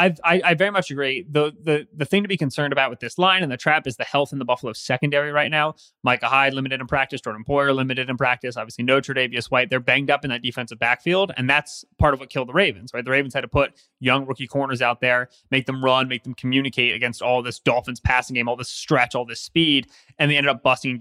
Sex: male